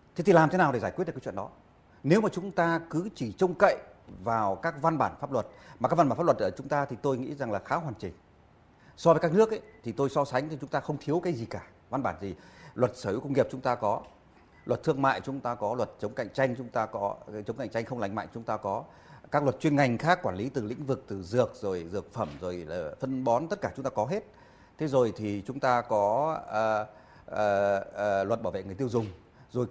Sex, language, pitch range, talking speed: male, Vietnamese, 105-155 Hz, 270 wpm